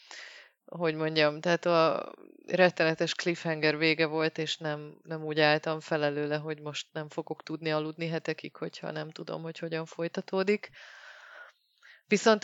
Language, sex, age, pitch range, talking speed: Hungarian, female, 20-39, 155-175 Hz, 135 wpm